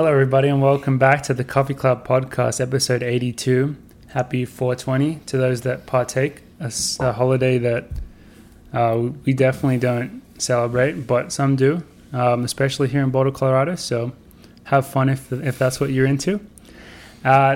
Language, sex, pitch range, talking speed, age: English, male, 125-140 Hz, 155 wpm, 20-39